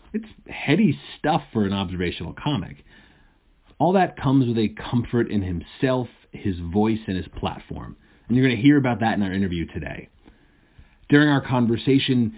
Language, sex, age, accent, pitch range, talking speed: English, male, 30-49, American, 100-135 Hz, 160 wpm